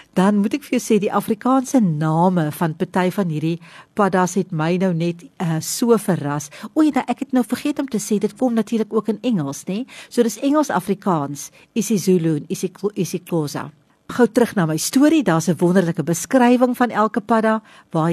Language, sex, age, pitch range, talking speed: English, female, 60-79, 165-220 Hz, 200 wpm